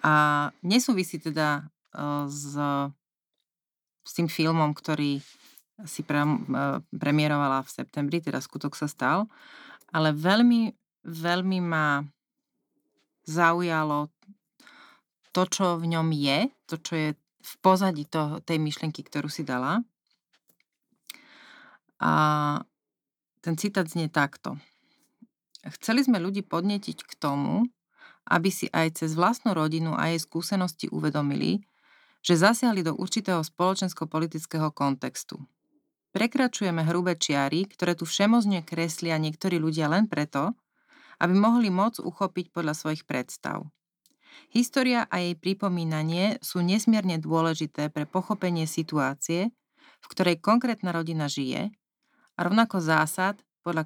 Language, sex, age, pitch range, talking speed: Slovak, female, 30-49, 155-205 Hz, 115 wpm